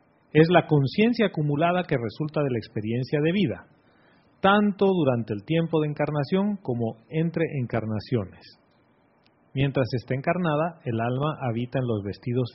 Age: 40-59